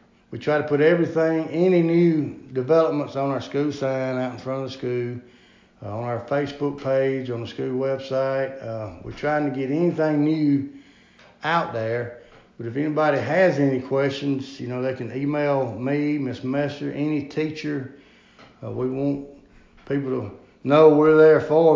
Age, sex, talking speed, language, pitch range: 60-79, male, 170 wpm, English, 120-145 Hz